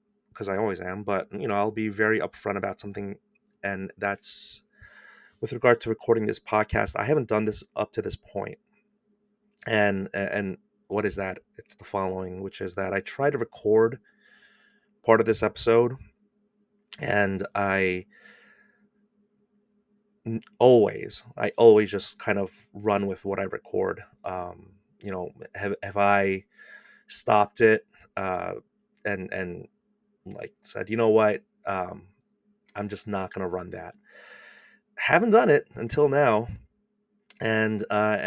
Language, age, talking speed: English, 30-49, 145 wpm